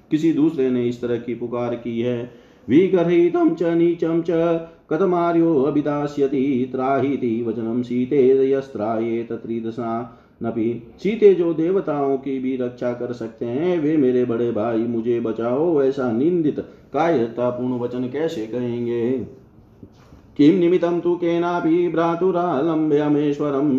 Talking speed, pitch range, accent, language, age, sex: 95 wpm, 120-160 Hz, native, Hindi, 40-59, male